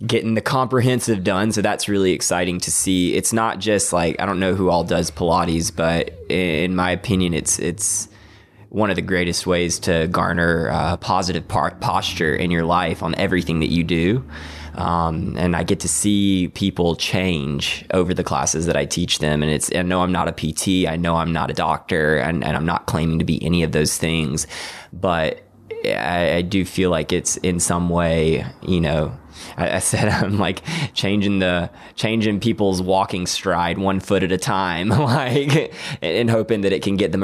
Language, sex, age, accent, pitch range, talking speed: English, male, 20-39, American, 85-95 Hz, 195 wpm